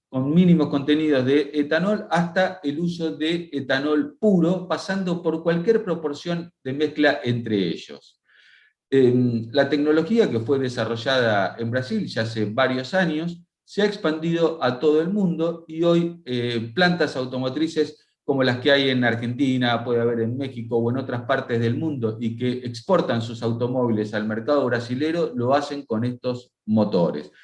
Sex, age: male, 40-59